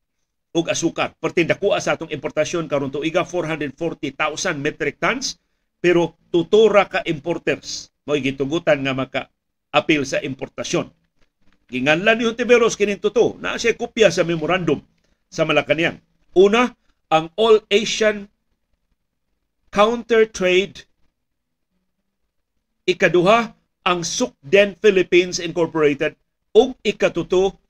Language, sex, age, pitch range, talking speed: Filipino, male, 50-69, 150-195 Hz, 105 wpm